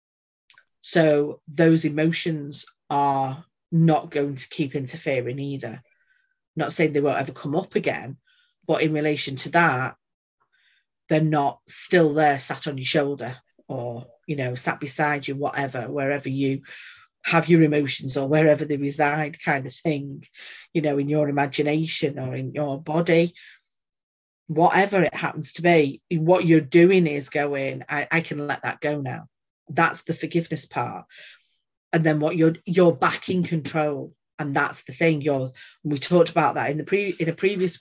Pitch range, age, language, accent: 140-165 Hz, 40-59, English, British